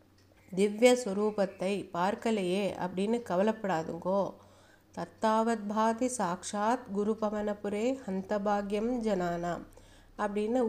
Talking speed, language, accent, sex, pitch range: 80 wpm, Tamil, native, female, 185-235 Hz